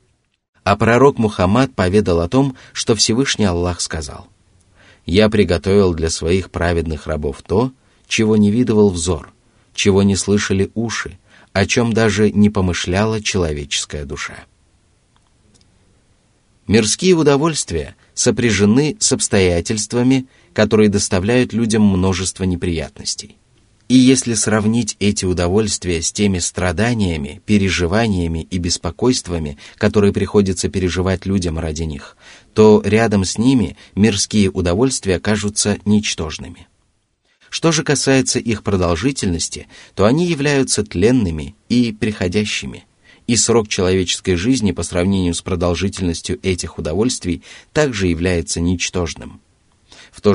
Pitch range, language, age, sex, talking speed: 90-110 Hz, Russian, 30-49, male, 110 wpm